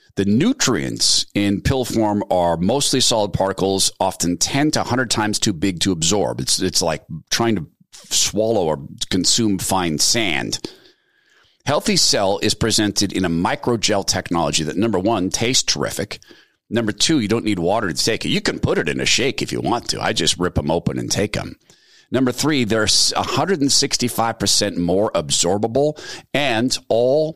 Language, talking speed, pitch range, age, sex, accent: English, 170 wpm, 95-125 Hz, 40-59, male, American